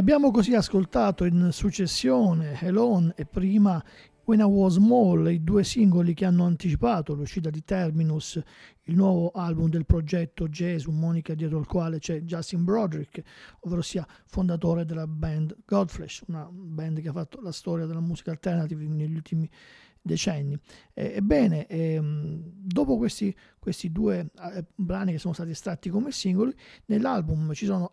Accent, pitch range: native, 160-195 Hz